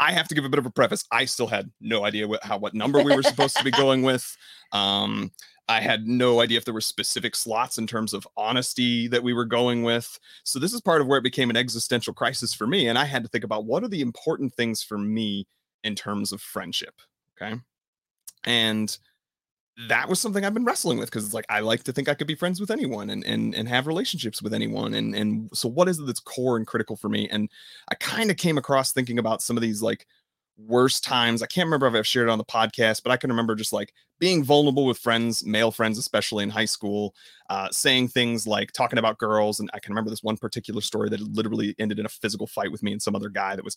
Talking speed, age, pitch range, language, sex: 255 wpm, 30-49, 110-140 Hz, English, male